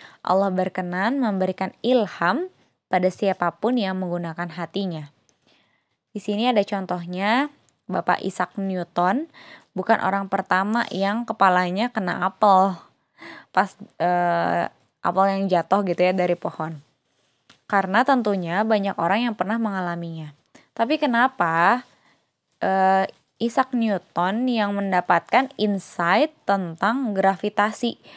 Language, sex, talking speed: Indonesian, female, 105 wpm